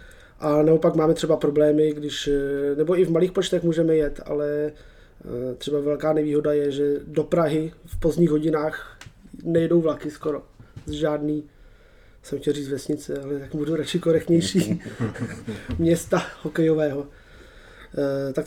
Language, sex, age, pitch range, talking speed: Czech, male, 20-39, 145-165 Hz, 135 wpm